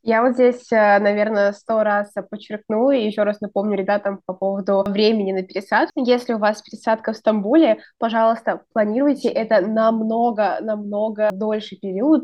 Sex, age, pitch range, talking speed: female, 20-39, 200-235 Hz, 140 wpm